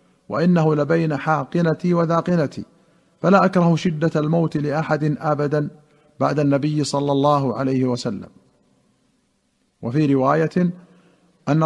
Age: 50-69